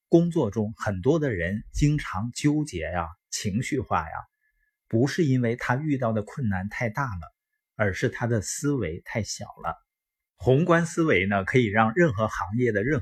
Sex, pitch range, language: male, 105-150 Hz, Chinese